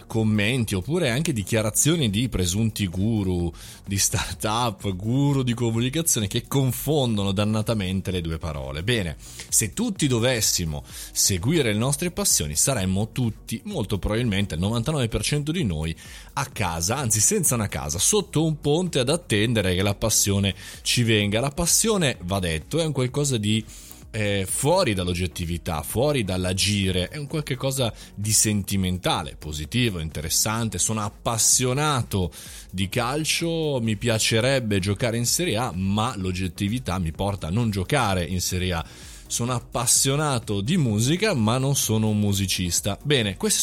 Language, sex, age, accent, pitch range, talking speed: Italian, male, 20-39, native, 95-135 Hz, 145 wpm